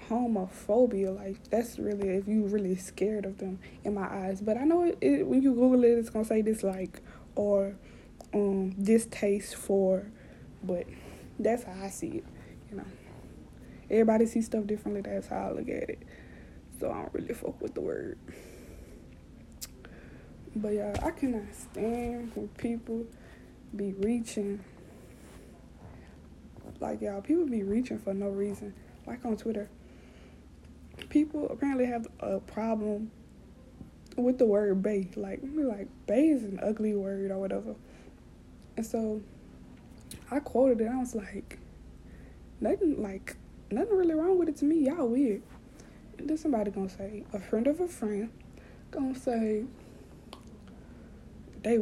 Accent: American